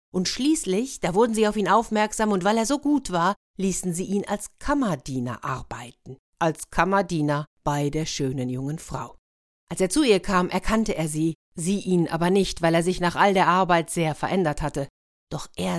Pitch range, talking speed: 150-205 Hz, 195 wpm